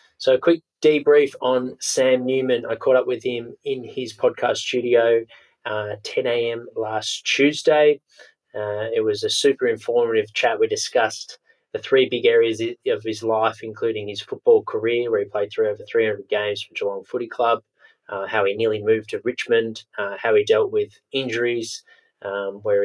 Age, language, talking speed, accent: 20-39, English, 175 wpm, Australian